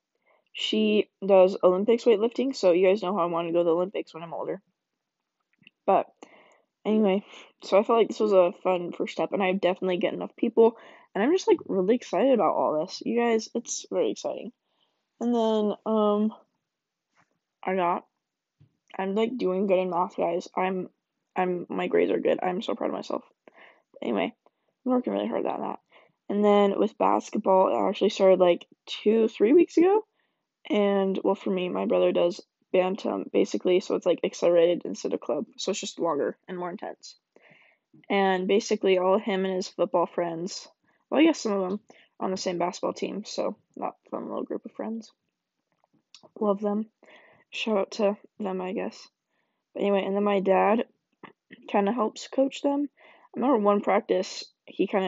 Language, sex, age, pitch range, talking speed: English, female, 10-29, 185-220 Hz, 185 wpm